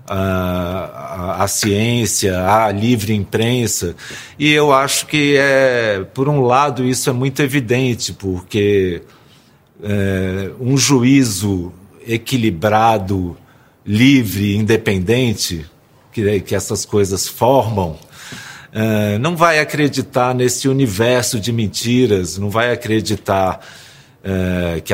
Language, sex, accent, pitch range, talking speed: Portuguese, male, Brazilian, 100-125 Hz, 110 wpm